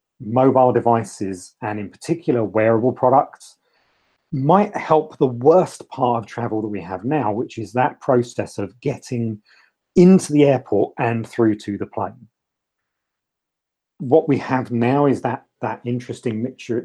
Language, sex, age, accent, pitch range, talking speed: English, male, 40-59, British, 100-125 Hz, 145 wpm